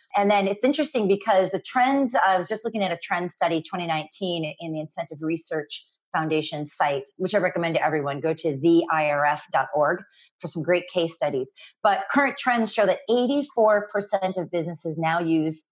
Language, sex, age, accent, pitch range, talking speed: English, female, 30-49, American, 165-225 Hz, 170 wpm